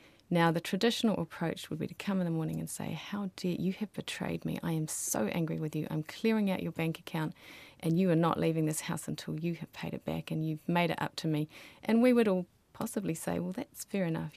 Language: English